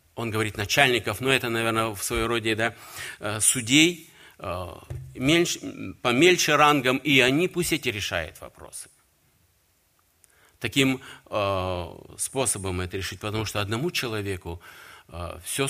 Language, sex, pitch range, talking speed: Russian, male, 90-115 Hz, 105 wpm